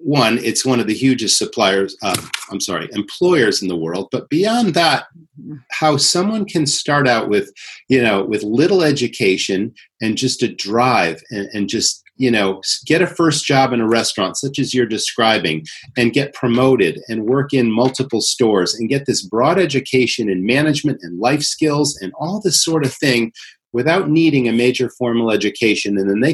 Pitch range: 110-145 Hz